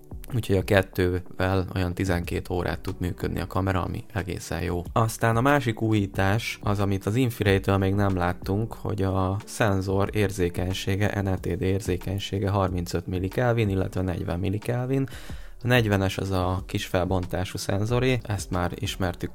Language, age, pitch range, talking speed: Hungarian, 20-39, 95-105 Hz, 140 wpm